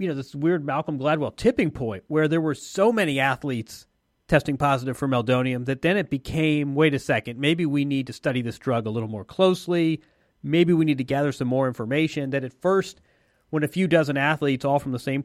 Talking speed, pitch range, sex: 220 wpm, 125-160 Hz, male